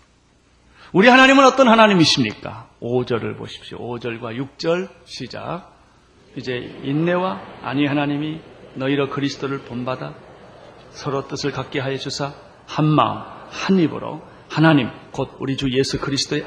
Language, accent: Korean, native